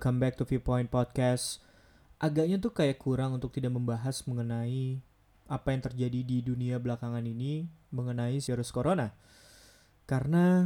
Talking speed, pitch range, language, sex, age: 135 wpm, 125-150 Hz, Indonesian, male, 20-39